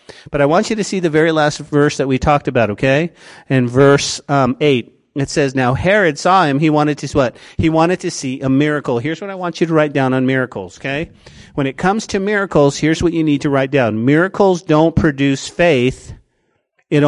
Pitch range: 130-160 Hz